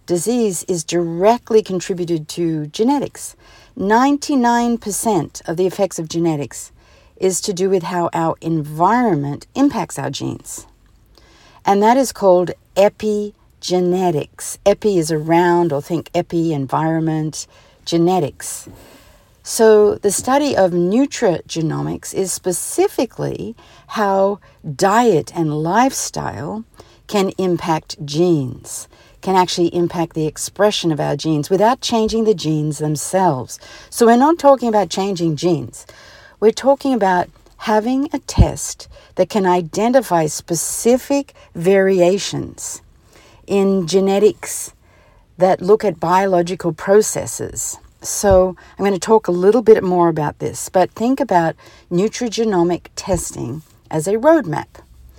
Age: 60-79